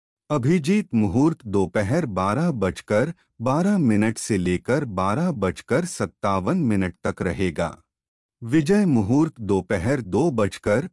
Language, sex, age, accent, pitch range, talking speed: Hindi, male, 30-49, native, 95-155 Hz, 115 wpm